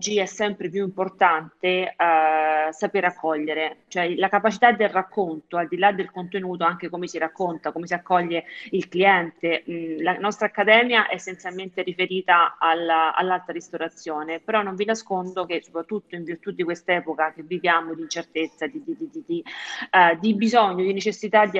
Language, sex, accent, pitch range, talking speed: Italian, female, native, 170-205 Hz, 165 wpm